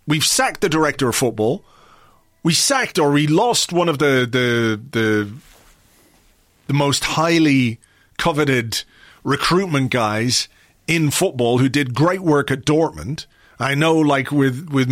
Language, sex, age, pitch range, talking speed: English, male, 40-59, 125-165 Hz, 135 wpm